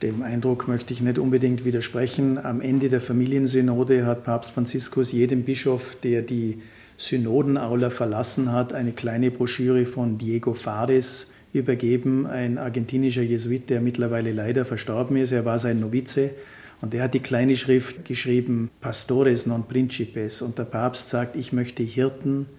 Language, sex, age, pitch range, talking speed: German, male, 50-69, 120-130 Hz, 150 wpm